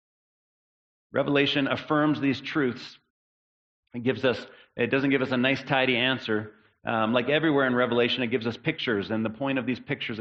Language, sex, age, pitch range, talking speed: English, male, 40-59, 115-135 Hz, 175 wpm